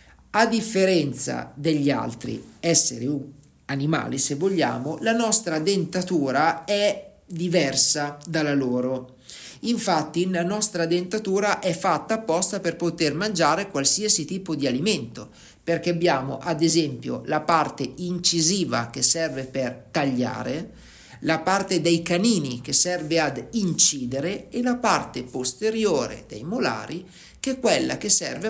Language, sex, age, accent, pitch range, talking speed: Italian, male, 50-69, native, 140-175 Hz, 125 wpm